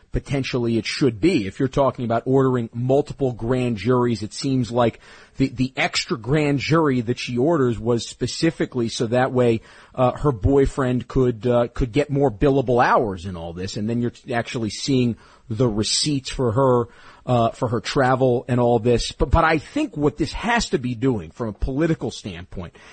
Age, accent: 40-59, American